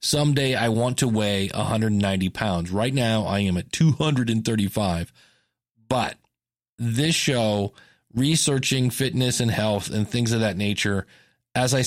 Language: English